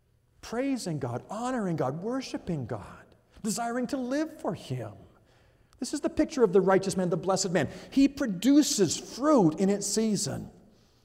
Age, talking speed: 50-69, 150 wpm